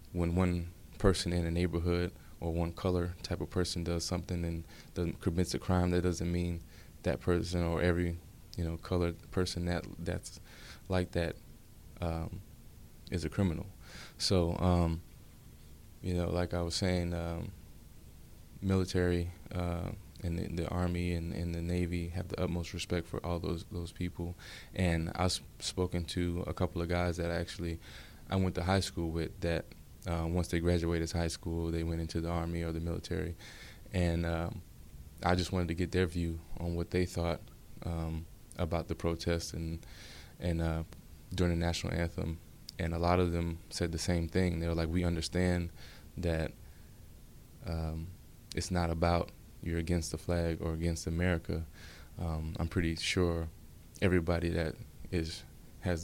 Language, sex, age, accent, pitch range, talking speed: English, male, 20-39, American, 85-90 Hz, 165 wpm